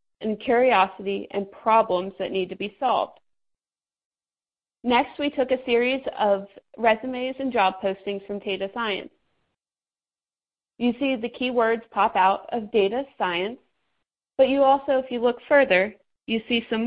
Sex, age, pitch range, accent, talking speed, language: female, 30-49, 200-250 Hz, American, 145 wpm, English